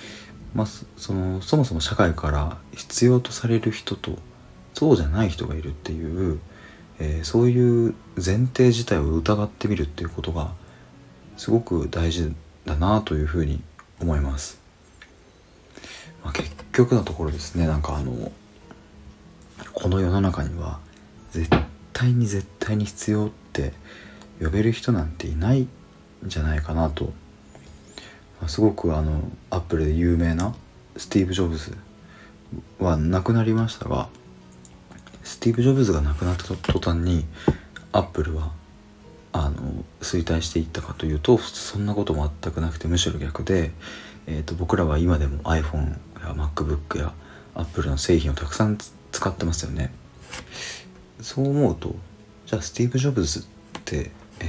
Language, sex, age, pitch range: Japanese, male, 40-59, 75-105 Hz